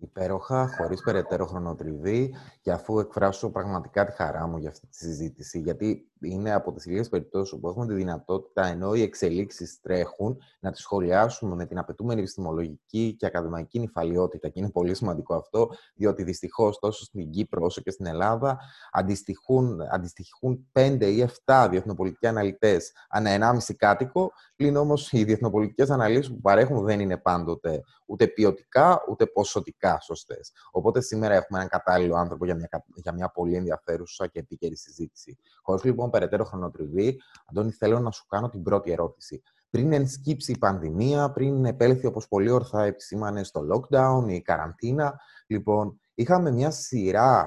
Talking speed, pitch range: 155 wpm, 90-120 Hz